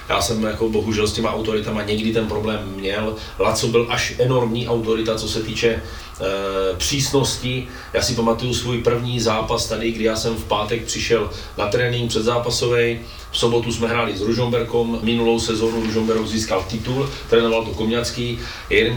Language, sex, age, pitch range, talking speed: Slovak, male, 30-49, 110-125 Hz, 170 wpm